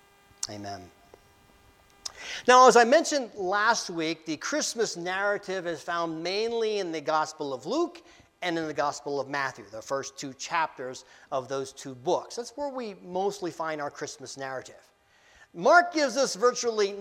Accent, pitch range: American, 160-235 Hz